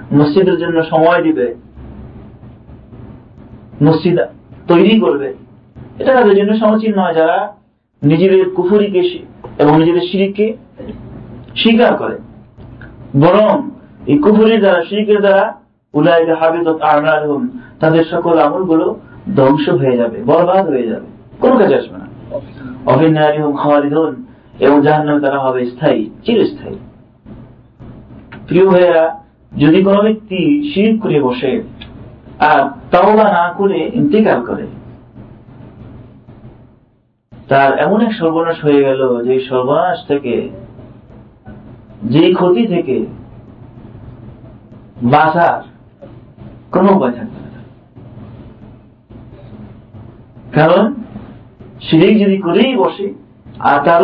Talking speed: 100 wpm